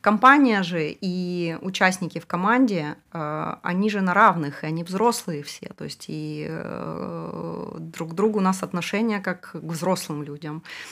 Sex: female